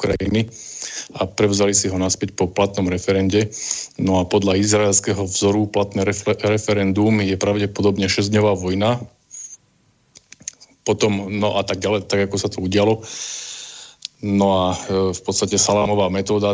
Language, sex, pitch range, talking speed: Slovak, male, 95-105 Hz, 135 wpm